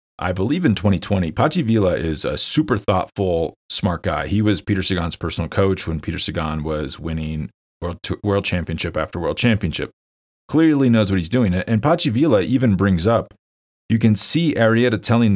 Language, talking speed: English, 180 wpm